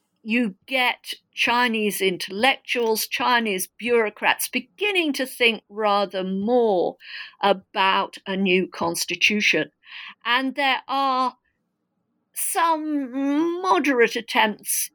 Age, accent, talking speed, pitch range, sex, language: 50-69, British, 85 wpm, 185-255 Hz, female, English